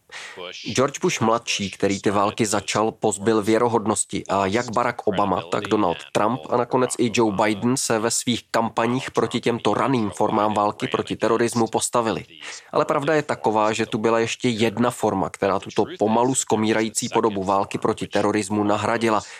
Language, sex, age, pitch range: Czech, male, 20-39, 105-125 Hz